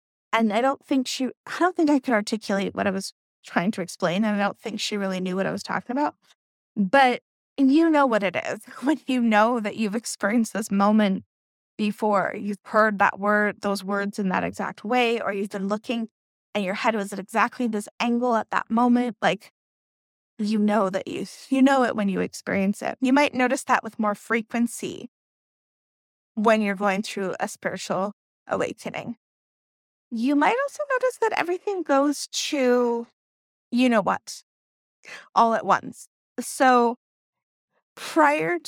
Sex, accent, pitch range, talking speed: female, American, 210-265 Hz, 175 wpm